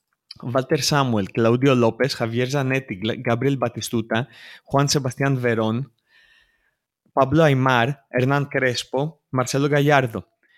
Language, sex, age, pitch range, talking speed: Greek, male, 20-39, 115-150 Hz, 95 wpm